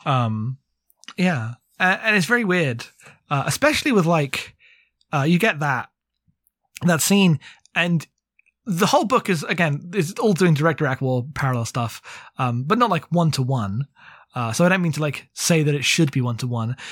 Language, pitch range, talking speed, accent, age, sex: English, 140-190 Hz, 190 wpm, British, 20-39, male